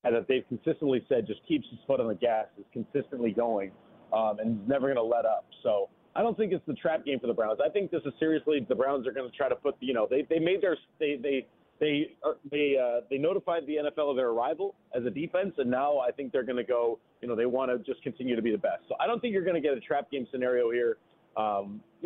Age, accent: 30-49, American